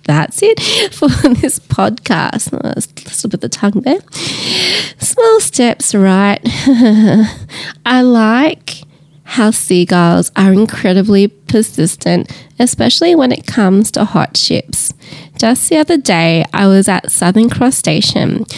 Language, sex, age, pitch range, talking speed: English, female, 20-39, 175-240 Hz, 130 wpm